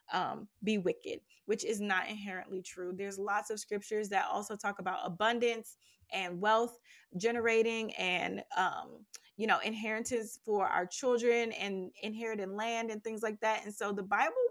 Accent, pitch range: American, 195-230 Hz